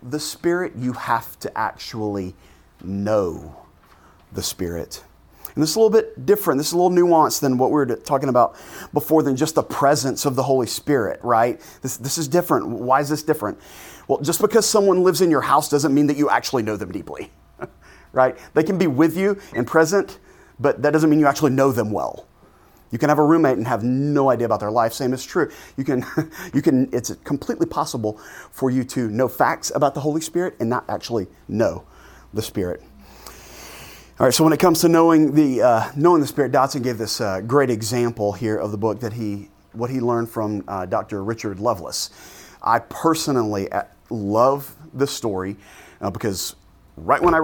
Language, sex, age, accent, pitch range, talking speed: English, male, 30-49, American, 110-150 Hz, 200 wpm